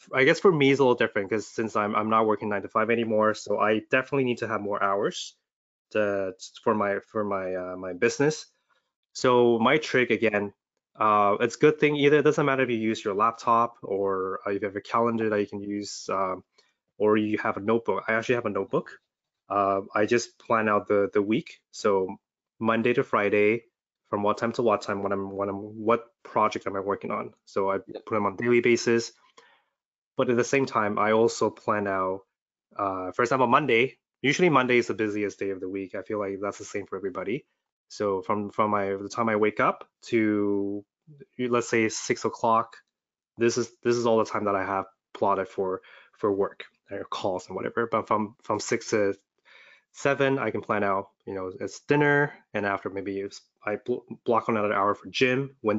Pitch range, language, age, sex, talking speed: 100-120 Hz, English, 20-39, male, 210 wpm